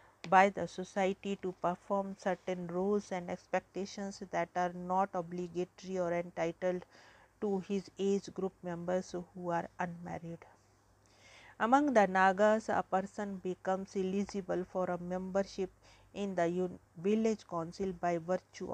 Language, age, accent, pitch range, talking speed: English, 50-69, Indian, 170-195 Hz, 125 wpm